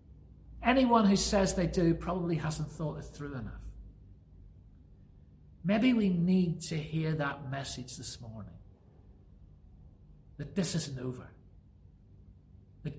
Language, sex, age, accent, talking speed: English, male, 40-59, British, 115 wpm